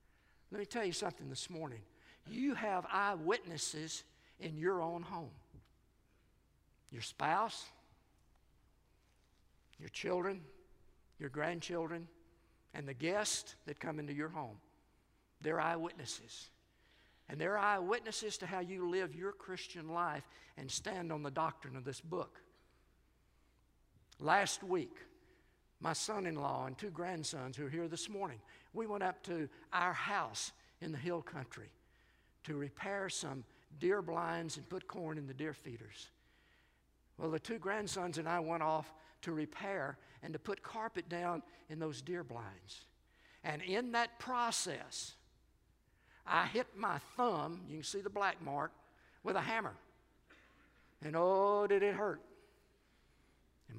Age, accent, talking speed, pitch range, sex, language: 60-79, American, 140 wpm, 145-190 Hz, male, English